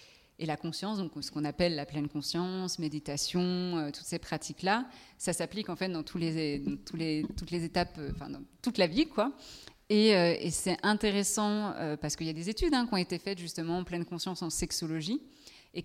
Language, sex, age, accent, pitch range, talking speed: French, female, 20-39, French, 160-195 Hz, 205 wpm